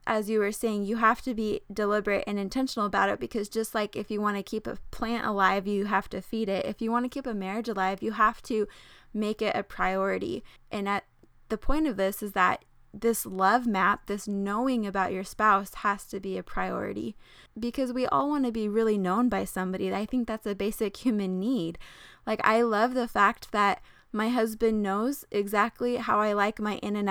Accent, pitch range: American, 200-235 Hz